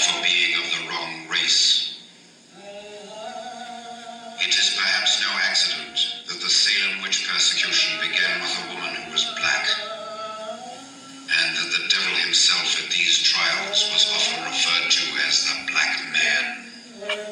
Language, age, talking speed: English, 60-79, 135 wpm